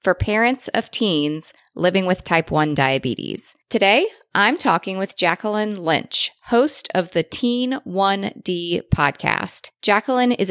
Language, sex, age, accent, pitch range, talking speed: English, female, 30-49, American, 175-240 Hz, 130 wpm